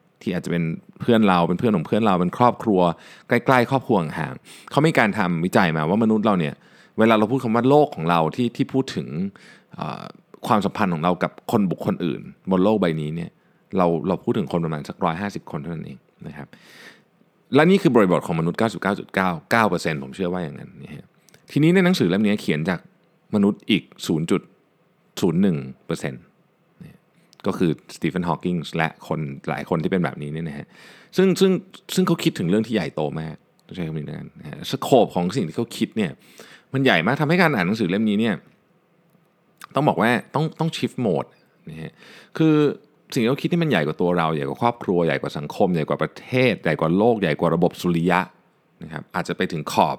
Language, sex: Thai, male